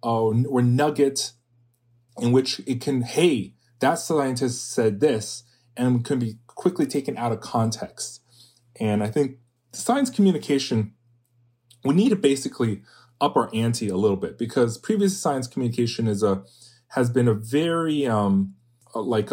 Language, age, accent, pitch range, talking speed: English, 30-49, American, 110-135 Hz, 145 wpm